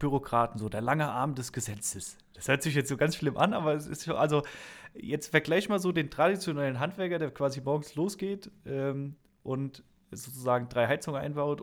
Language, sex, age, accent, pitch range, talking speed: German, male, 20-39, German, 115-145 Hz, 190 wpm